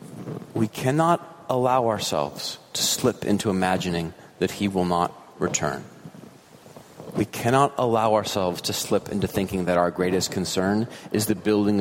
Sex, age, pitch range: male, 30-49, 95-115 Hz